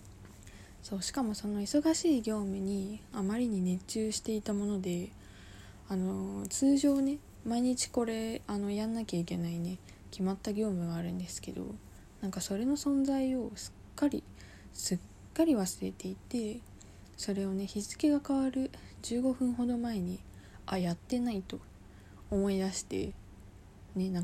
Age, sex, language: 20-39, female, Japanese